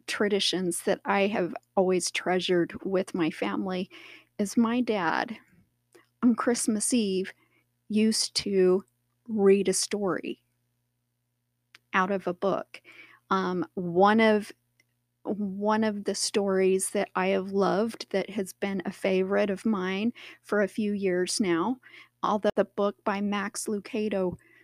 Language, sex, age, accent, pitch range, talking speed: English, female, 40-59, American, 180-235 Hz, 130 wpm